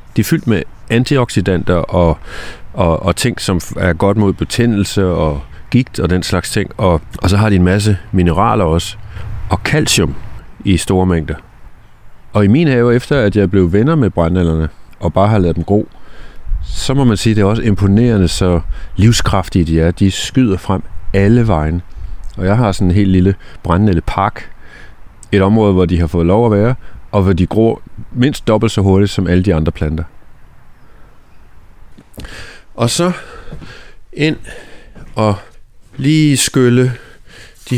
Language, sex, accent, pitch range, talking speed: Danish, male, native, 90-115 Hz, 170 wpm